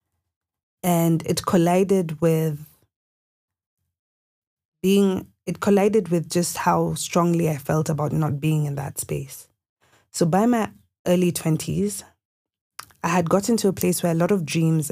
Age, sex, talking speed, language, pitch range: 20-39, female, 140 wpm, English, 150-180 Hz